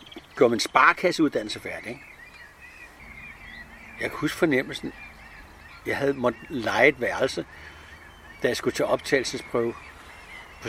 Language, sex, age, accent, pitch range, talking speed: English, male, 60-79, Danish, 85-140 Hz, 120 wpm